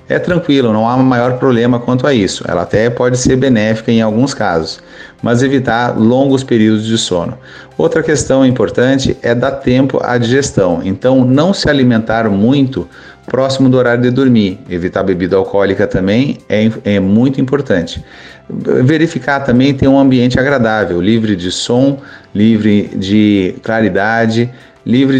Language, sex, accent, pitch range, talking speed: Portuguese, male, Brazilian, 110-130 Hz, 150 wpm